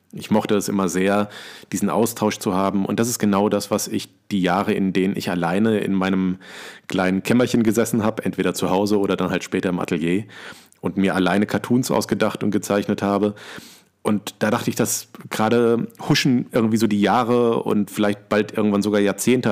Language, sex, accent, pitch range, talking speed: German, male, German, 95-110 Hz, 190 wpm